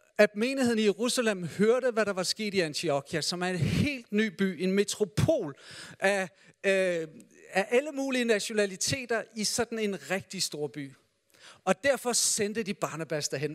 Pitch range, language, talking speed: 165-220 Hz, Danish, 160 wpm